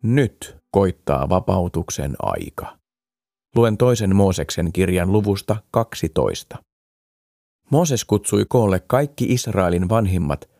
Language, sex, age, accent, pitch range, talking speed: Finnish, male, 30-49, native, 90-115 Hz, 90 wpm